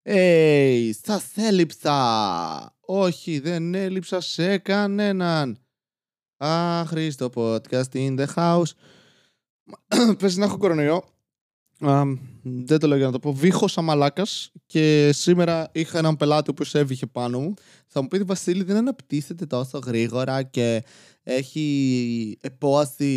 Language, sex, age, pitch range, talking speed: Greek, male, 20-39, 140-190 Hz, 130 wpm